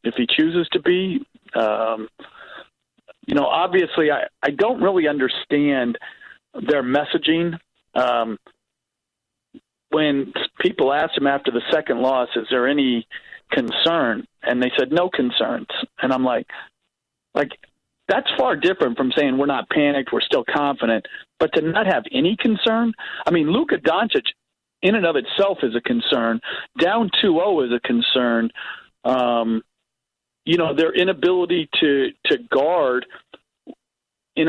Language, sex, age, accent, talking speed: English, male, 40-59, American, 140 wpm